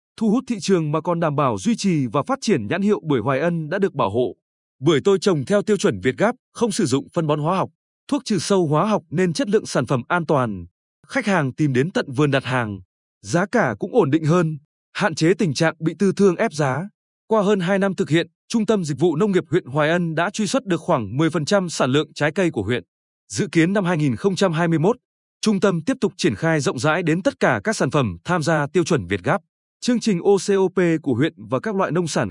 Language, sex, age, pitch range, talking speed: Vietnamese, male, 20-39, 150-200 Hz, 245 wpm